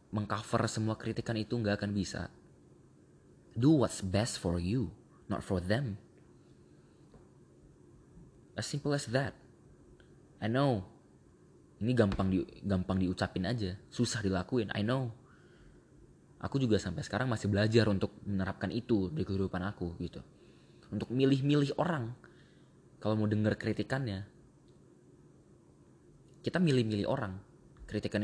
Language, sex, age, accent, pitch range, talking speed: Indonesian, male, 20-39, native, 95-115 Hz, 120 wpm